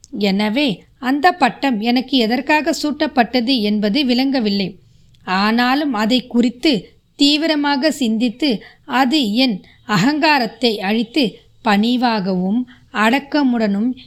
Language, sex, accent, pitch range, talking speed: Tamil, female, native, 220-270 Hz, 80 wpm